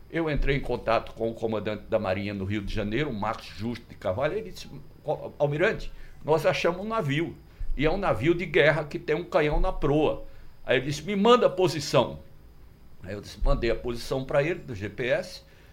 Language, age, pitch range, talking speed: Portuguese, 60-79, 120-165 Hz, 205 wpm